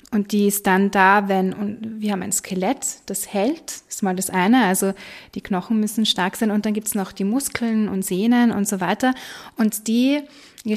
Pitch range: 190-220 Hz